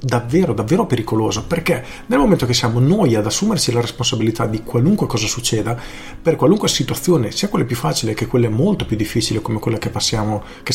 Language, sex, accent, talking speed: Italian, male, native, 190 wpm